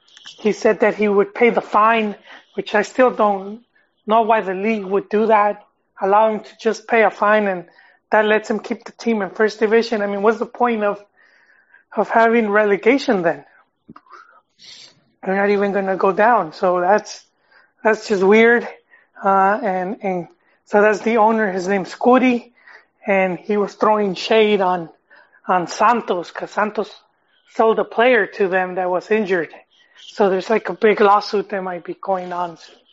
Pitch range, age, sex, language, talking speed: 195-235 Hz, 30-49, male, English, 175 wpm